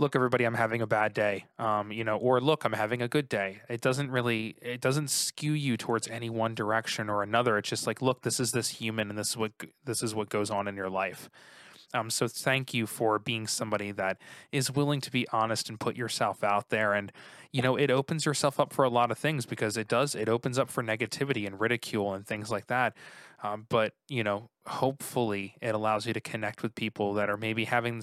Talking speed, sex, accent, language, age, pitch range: 235 wpm, male, American, English, 20-39, 105-125 Hz